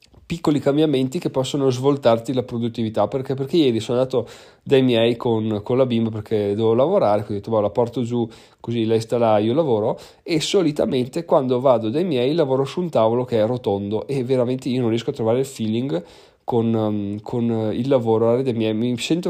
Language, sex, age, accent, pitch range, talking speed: Italian, male, 30-49, native, 115-140 Hz, 195 wpm